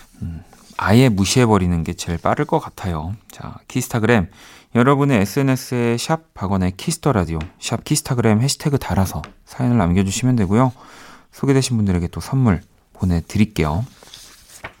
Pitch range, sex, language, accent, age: 90-120 Hz, male, Korean, native, 40-59